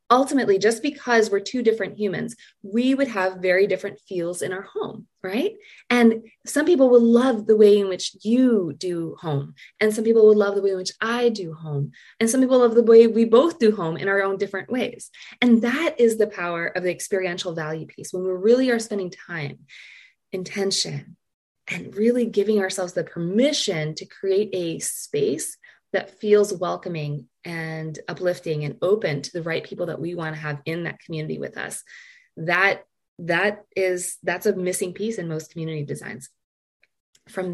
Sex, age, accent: female, 20-39, American